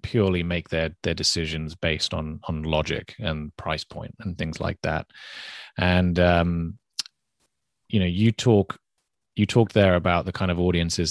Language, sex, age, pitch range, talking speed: English, male, 30-49, 80-95 Hz, 160 wpm